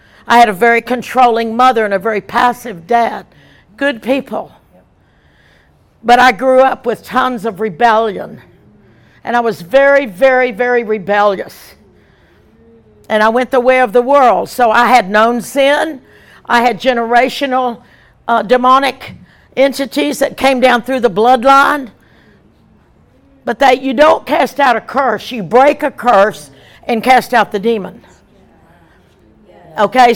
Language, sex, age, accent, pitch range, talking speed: English, female, 60-79, American, 230-270 Hz, 140 wpm